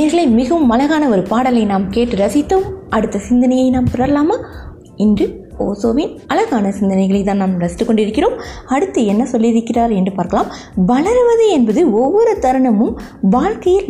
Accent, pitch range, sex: native, 200-295 Hz, female